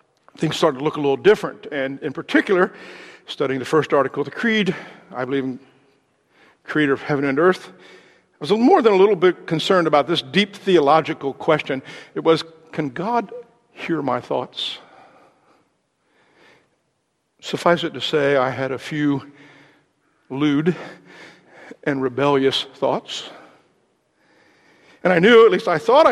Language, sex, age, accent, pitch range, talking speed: English, male, 60-79, American, 145-175 Hz, 150 wpm